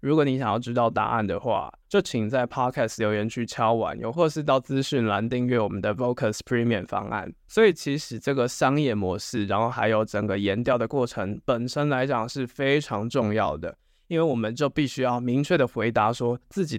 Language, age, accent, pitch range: Chinese, 20-39, native, 110-140 Hz